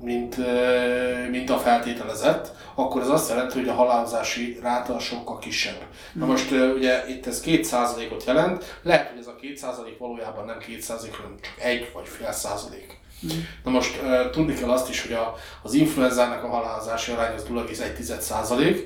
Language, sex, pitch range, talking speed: Hungarian, male, 115-130 Hz, 155 wpm